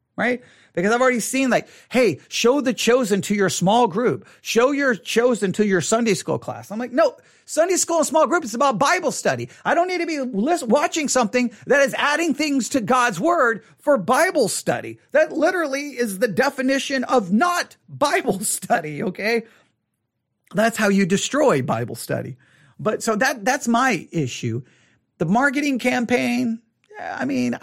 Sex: male